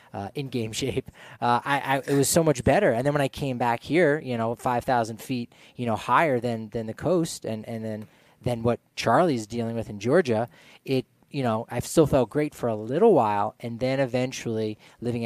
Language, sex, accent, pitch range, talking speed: English, male, American, 110-130 Hz, 215 wpm